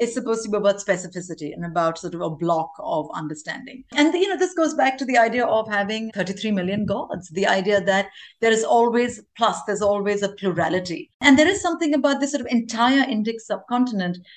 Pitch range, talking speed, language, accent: 190-245 Hz, 210 wpm, English, Indian